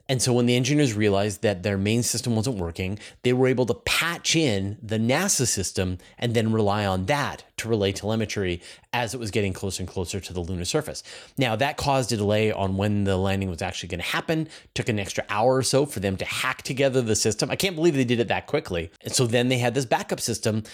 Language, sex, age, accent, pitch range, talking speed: English, male, 30-49, American, 95-125 Hz, 235 wpm